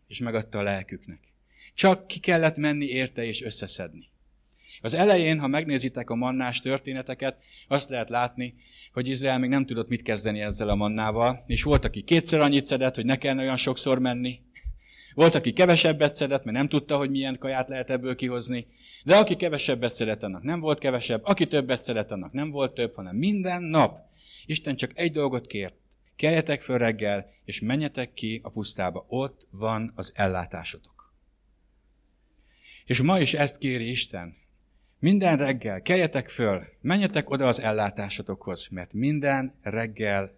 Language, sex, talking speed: English, male, 160 wpm